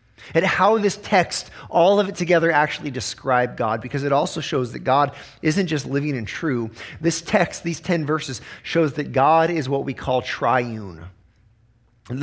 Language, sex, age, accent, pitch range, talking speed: English, male, 30-49, American, 135-190 Hz, 175 wpm